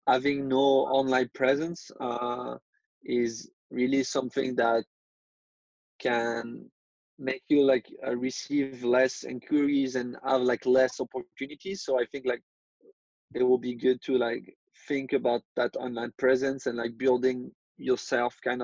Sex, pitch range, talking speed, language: male, 125-140 Hz, 135 wpm, Spanish